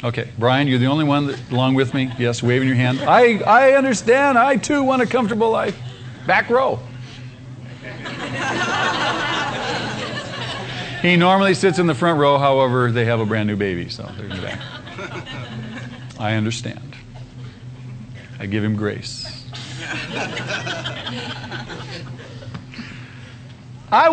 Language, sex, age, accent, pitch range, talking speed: English, male, 50-69, American, 120-160 Hz, 120 wpm